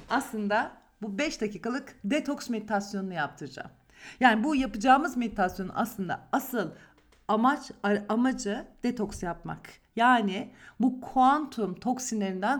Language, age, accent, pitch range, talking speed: Turkish, 50-69, native, 195-260 Hz, 100 wpm